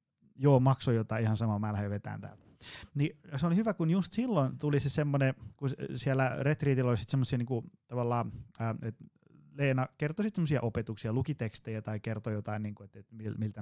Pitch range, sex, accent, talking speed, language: 115-140 Hz, male, native, 175 wpm, Finnish